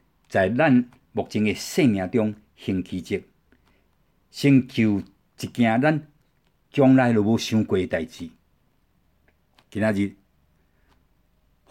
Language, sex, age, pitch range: Chinese, male, 60-79, 80-120 Hz